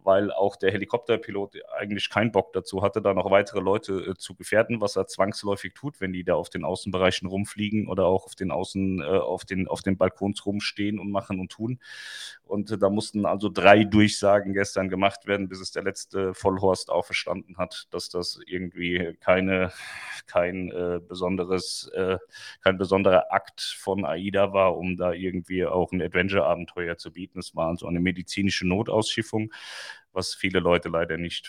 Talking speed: 185 wpm